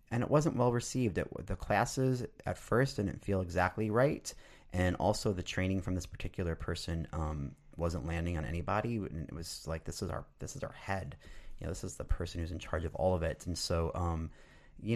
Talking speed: 215 wpm